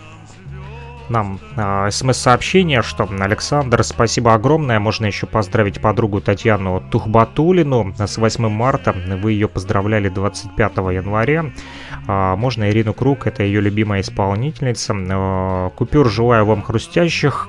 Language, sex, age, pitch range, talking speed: Russian, male, 30-49, 95-125 Hz, 105 wpm